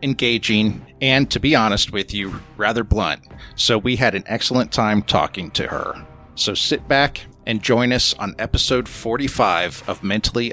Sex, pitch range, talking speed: male, 110-130 Hz, 165 wpm